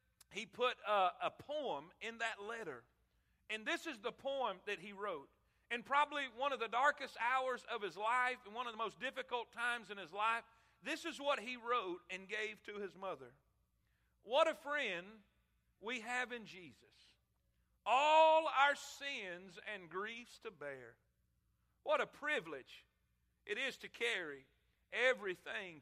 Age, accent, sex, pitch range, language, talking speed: 50-69, American, male, 210-265 Hz, English, 160 wpm